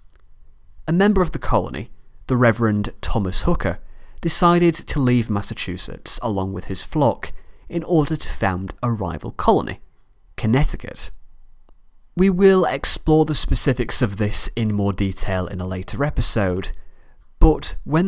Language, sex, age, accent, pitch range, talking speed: English, male, 30-49, British, 95-140 Hz, 135 wpm